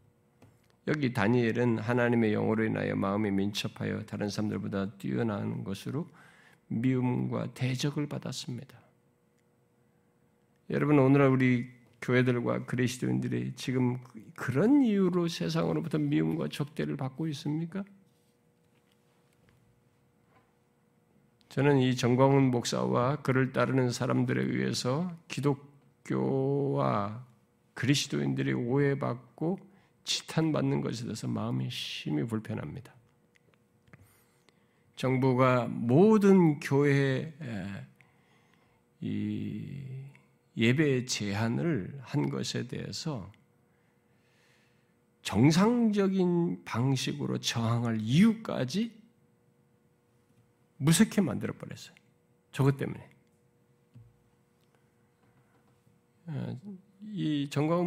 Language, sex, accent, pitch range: Korean, male, native, 110-150 Hz